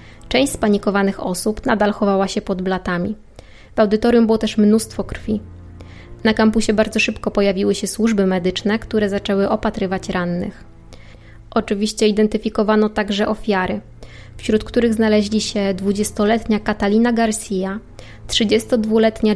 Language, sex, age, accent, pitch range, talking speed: Polish, female, 20-39, native, 190-220 Hz, 120 wpm